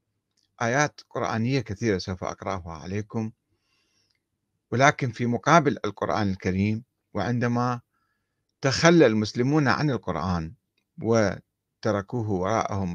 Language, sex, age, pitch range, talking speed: Arabic, male, 50-69, 105-155 Hz, 85 wpm